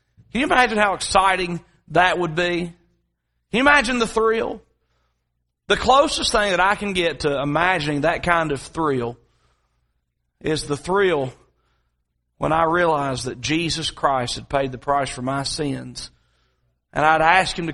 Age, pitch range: 40-59, 120-170 Hz